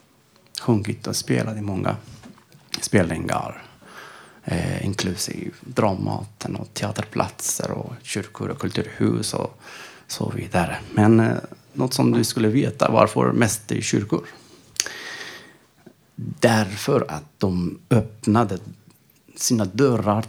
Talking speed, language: 100 wpm, Swedish